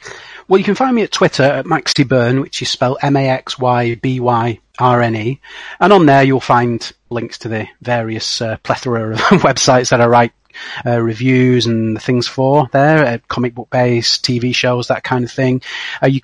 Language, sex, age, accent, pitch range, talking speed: English, male, 30-49, British, 120-140 Hz, 175 wpm